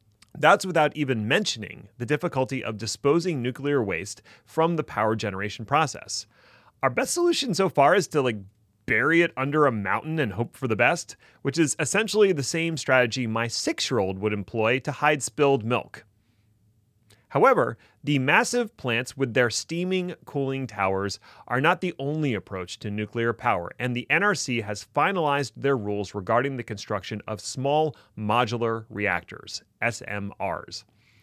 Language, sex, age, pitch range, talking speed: English, male, 30-49, 105-150 Hz, 150 wpm